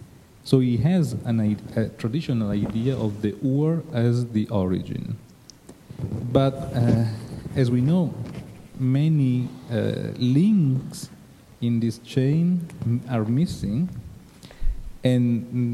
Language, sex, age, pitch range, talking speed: English, male, 40-59, 115-140 Hz, 100 wpm